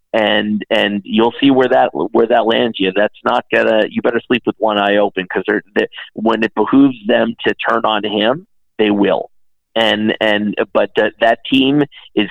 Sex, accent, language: male, American, English